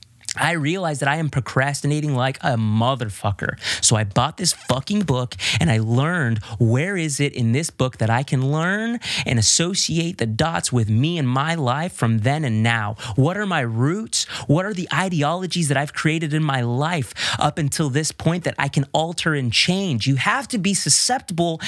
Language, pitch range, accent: English, 140-220 Hz, American